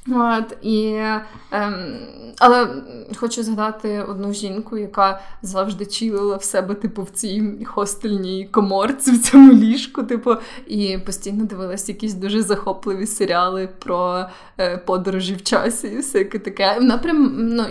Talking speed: 135 wpm